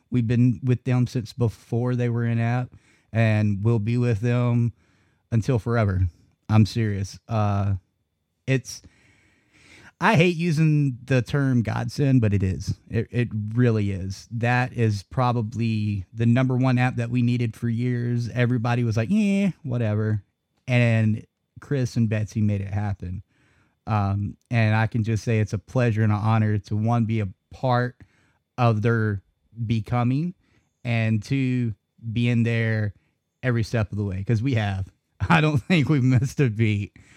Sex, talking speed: male, 160 wpm